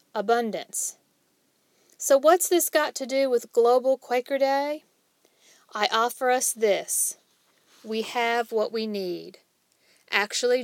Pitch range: 215-255 Hz